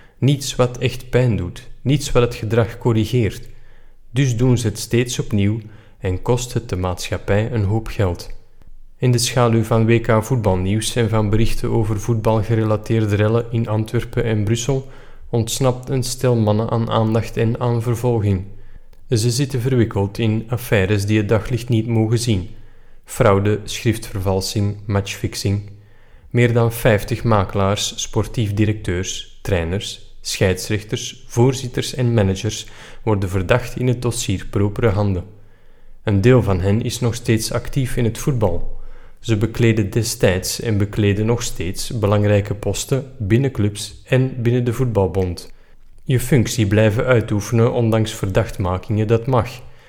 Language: Dutch